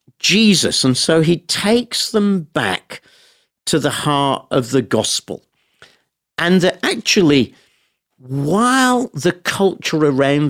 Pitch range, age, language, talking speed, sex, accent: 115-175 Hz, 50-69, English, 115 wpm, male, British